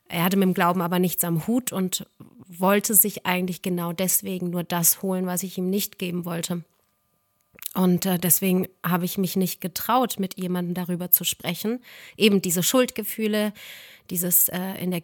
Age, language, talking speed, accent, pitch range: 30-49, German, 175 wpm, German, 180-215 Hz